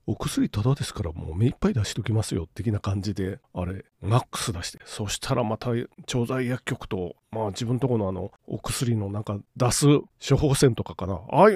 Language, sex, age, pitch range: Japanese, male, 40-59, 110-160 Hz